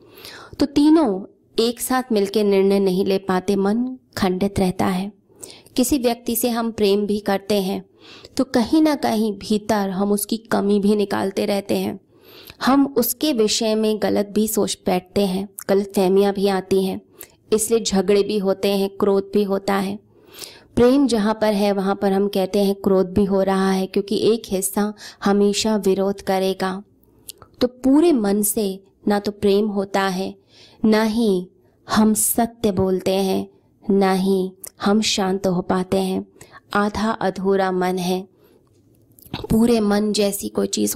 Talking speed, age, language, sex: 155 wpm, 20-39, Hindi, female